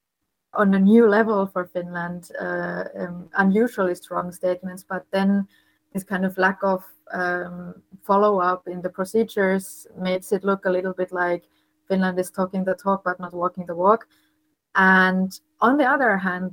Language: Finnish